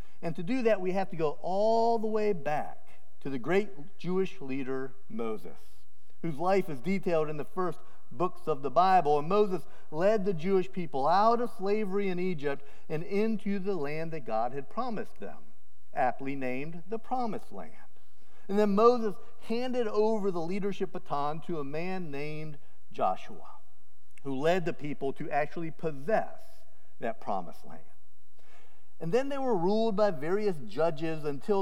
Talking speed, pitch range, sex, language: 165 wpm, 145-205 Hz, male, English